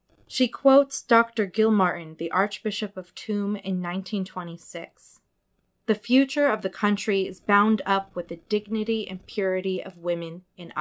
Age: 30-49